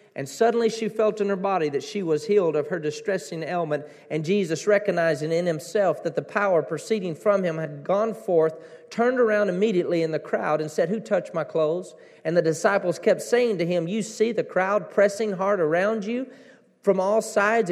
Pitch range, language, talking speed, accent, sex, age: 175-235 Hz, English, 200 wpm, American, male, 40-59